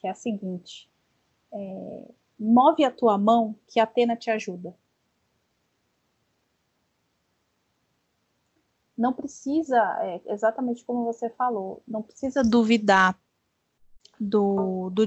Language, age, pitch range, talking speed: Portuguese, 20-39, 190-235 Hz, 105 wpm